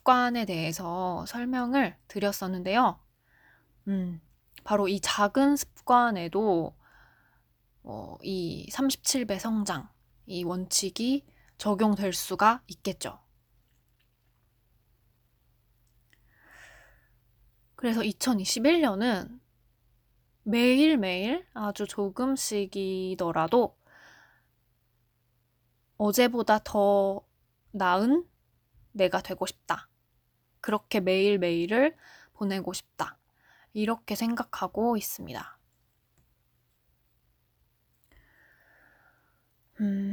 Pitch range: 175-235 Hz